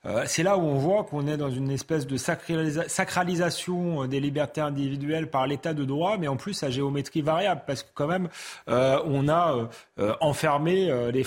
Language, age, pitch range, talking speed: French, 30-49, 145-180 Hz, 175 wpm